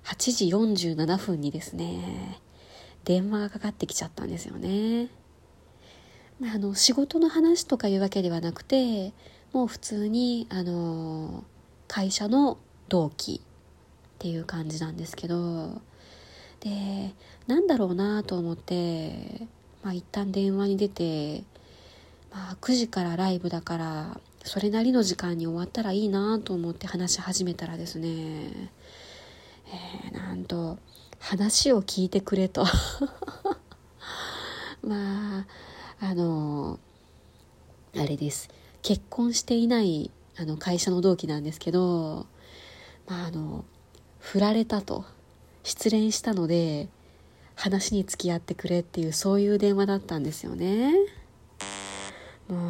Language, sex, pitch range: Japanese, female, 165-210 Hz